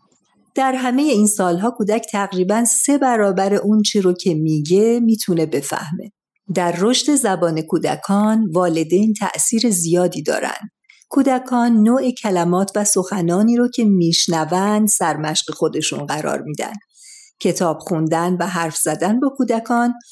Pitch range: 170-230 Hz